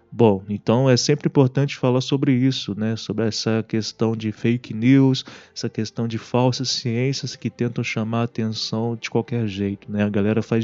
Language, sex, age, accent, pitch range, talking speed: Portuguese, male, 20-39, Brazilian, 115-160 Hz, 180 wpm